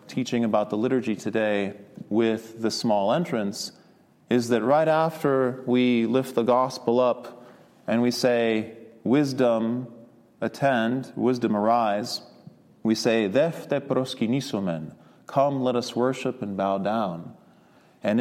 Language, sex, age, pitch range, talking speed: English, male, 30-49, 115-140 Hz, 115 wpm